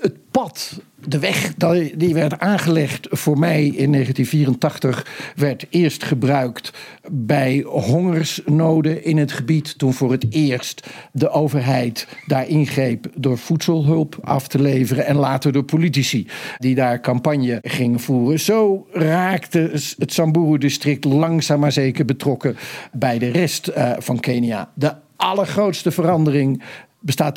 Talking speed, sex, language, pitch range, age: 130 wpm, male, Dutch, 125-160 Hz, 50-69